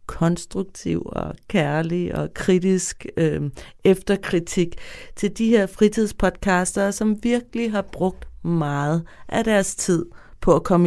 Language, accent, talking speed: Danish, native, 115 wpm